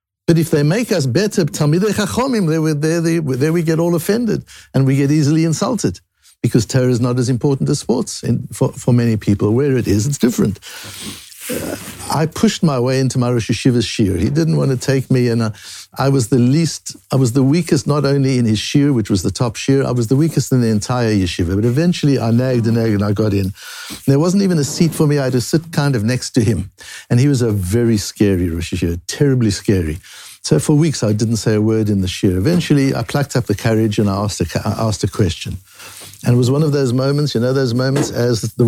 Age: 60-79